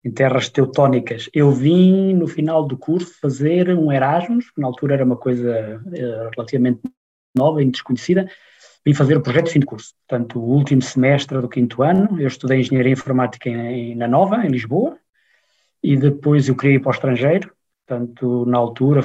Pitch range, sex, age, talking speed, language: 125-160 Hz, male, 20-39, 180 wpm, Portuguese